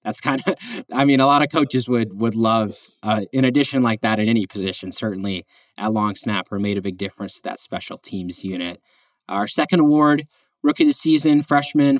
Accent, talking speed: American, 205 wpm